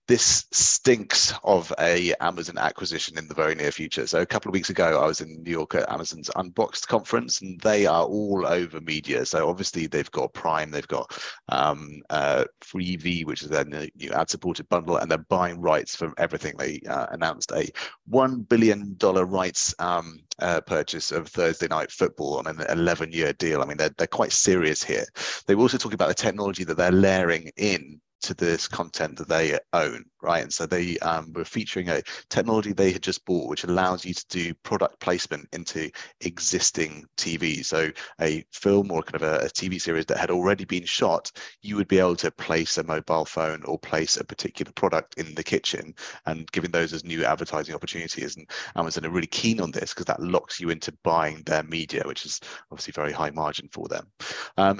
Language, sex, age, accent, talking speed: English, male, 30-49, British, 205 wpm